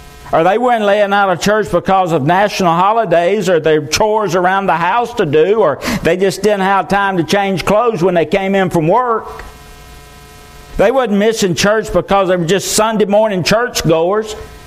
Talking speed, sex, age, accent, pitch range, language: 185 wpm, male, 60-79, American, 150-210 Hz, English